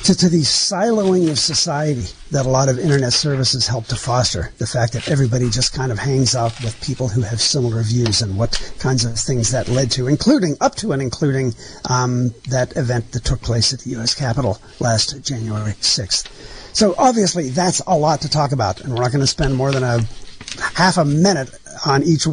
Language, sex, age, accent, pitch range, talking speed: English, male, 50-69, American, 125-155 Hz, 210 wpm